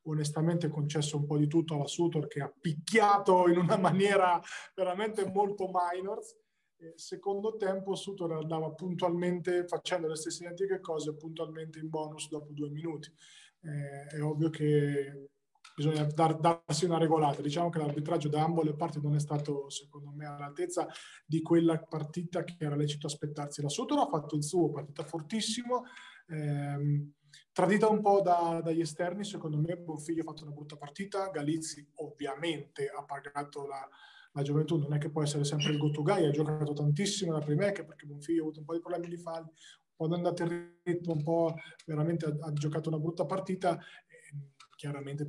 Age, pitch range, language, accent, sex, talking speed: 20-39, 150-175 Hz, Italian, native, male, 175 wpm